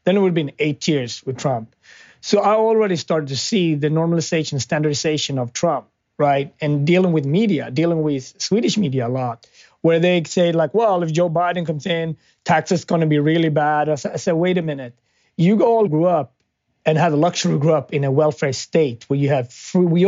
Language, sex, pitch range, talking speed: English, male, 150-185 Hz, 220 wpm